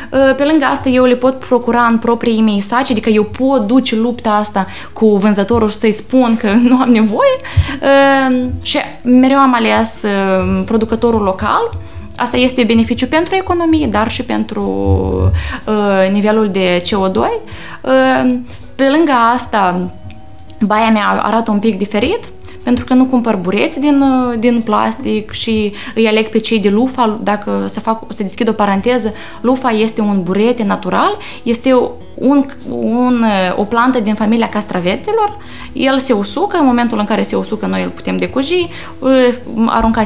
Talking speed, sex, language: 150 wpm, female, Romanian